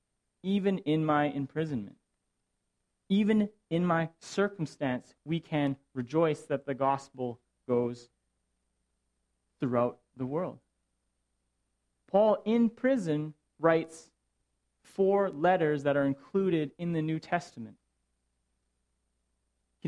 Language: English